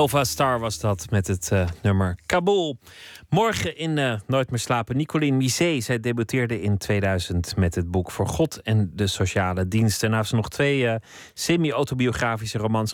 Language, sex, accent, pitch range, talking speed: Dutch, male, Dutch, 90-125 Hz, 175 wpm